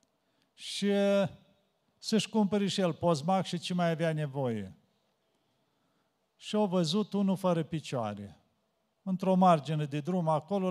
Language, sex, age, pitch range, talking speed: Romanian, male, 50-69, 145-185 Hz, 125 wpm